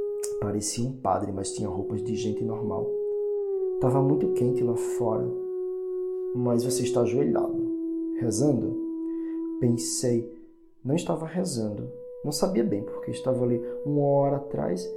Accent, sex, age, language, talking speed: Brazilian, male, 20-39, Portuguese, 130 wpm